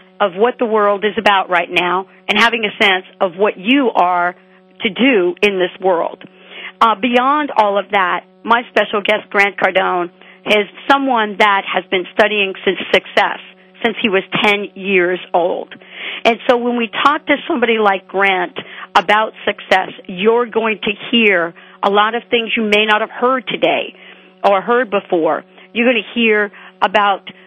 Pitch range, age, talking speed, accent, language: 185-230 Hz, 50-69, 170 wpm, American, English